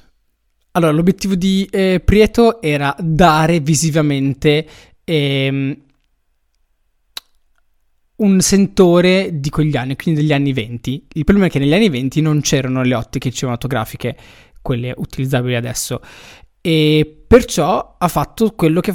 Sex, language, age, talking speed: male, Italian, 20-39, 125 wpm